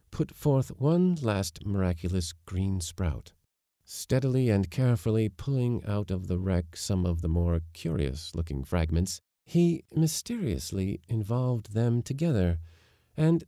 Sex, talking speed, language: male, 120 wpm, English